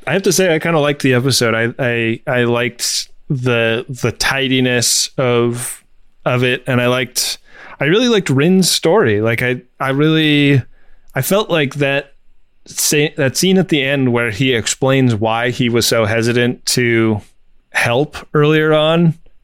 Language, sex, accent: English, male, American